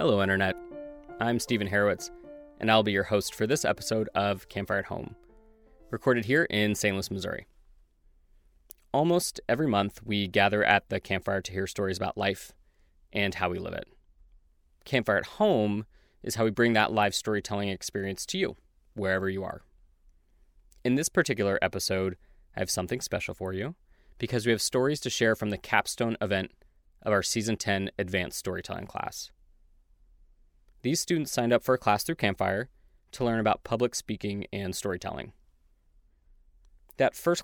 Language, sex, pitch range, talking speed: English, male, 90-115 Hz, 165 wpm